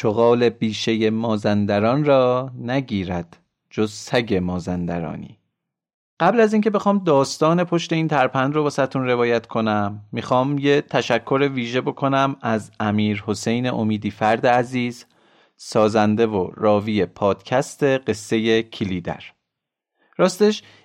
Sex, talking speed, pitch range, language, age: male, 110 wpm, 110-155 Hz, Persian, 40-59